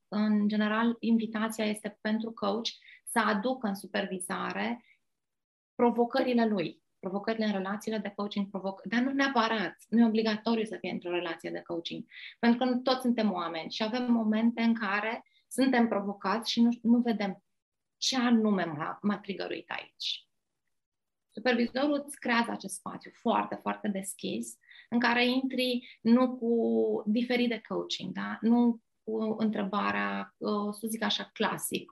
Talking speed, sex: 145 wpm, female